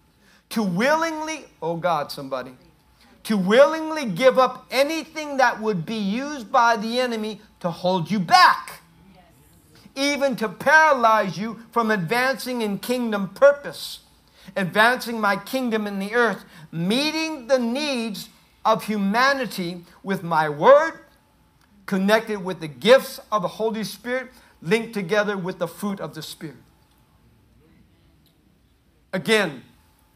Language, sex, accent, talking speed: English, male, American, 120 wpm